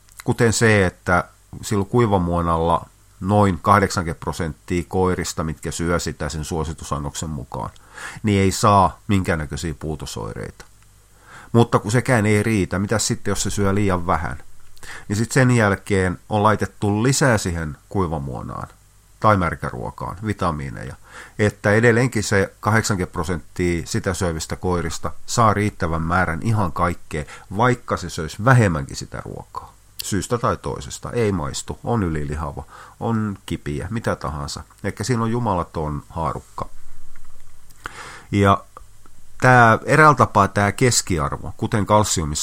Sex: male